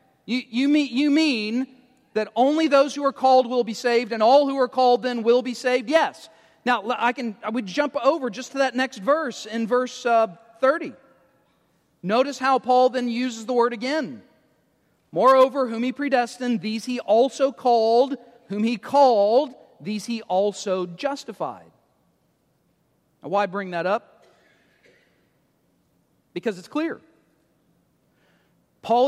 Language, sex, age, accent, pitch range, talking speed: English, male, 40-59, American, 215-265 Hz, 150 wpm